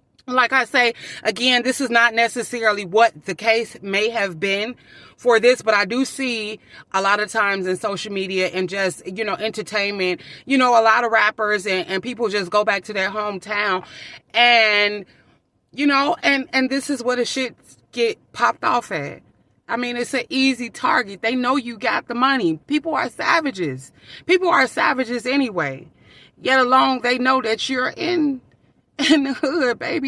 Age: 30-49